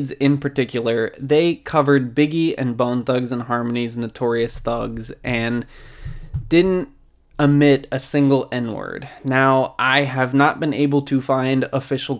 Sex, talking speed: male, 135 wpm